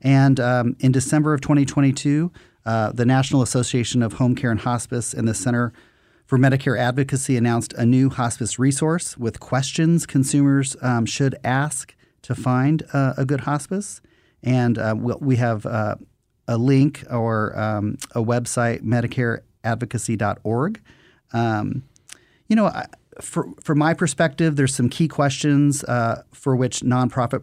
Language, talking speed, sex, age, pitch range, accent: English, 140 wpm, male, 40-59, 115-135 Hz, American